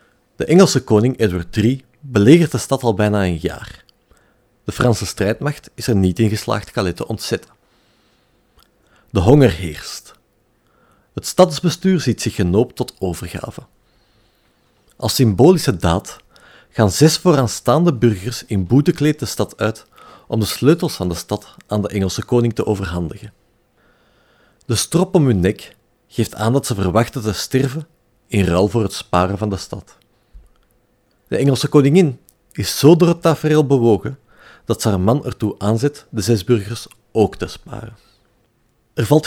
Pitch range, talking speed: 100-140 Hz, 150 wpm